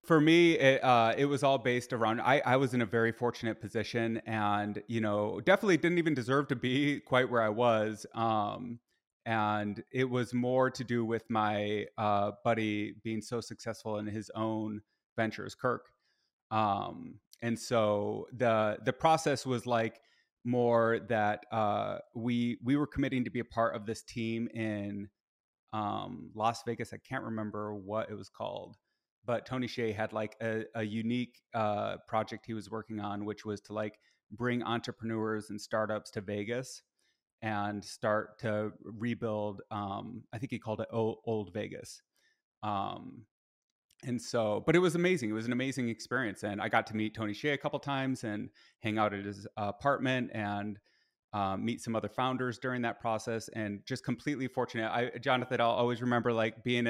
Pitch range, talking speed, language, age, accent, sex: 105-125 Hz, 175 wpm, English, 30-49, American, male